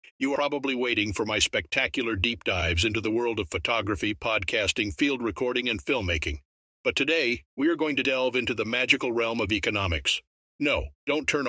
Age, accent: 50-69, American